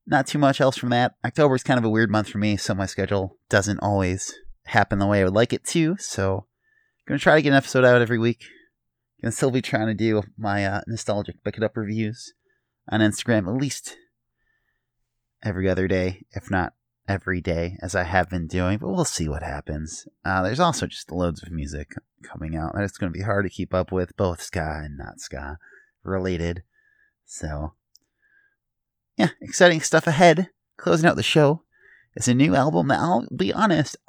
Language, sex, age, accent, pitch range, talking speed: English, male, 30-49, American, 95-135 Hz, 205 wpm